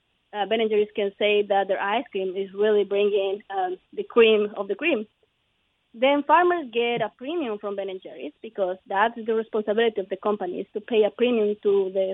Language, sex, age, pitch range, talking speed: English, female, 20-39, 205-245 Hz, 195 wpm